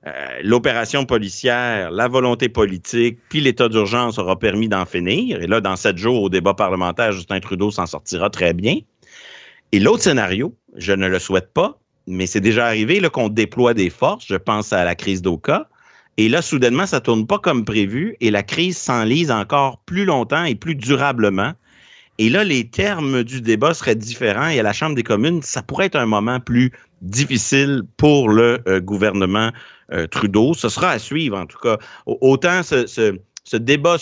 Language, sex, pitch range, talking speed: French, male, 100-135 Hz, 190 wpm